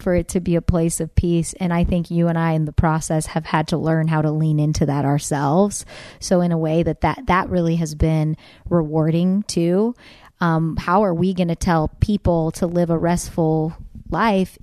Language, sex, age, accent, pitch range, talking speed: English, female, 30-49, American, 165-190 Hz, 215 wpm